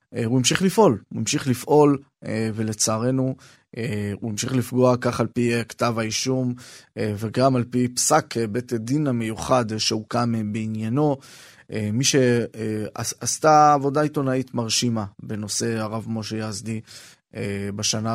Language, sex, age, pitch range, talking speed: Hebrew, male, 20-39, 115-150 Hz, 110 wpm